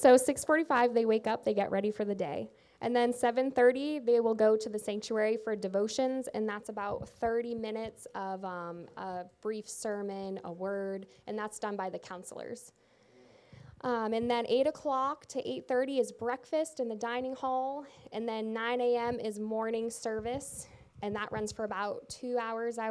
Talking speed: 180 wpm